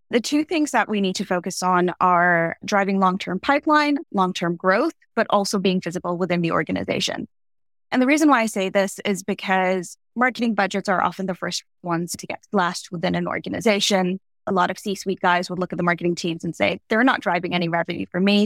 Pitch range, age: 175-205 Hz, 20-39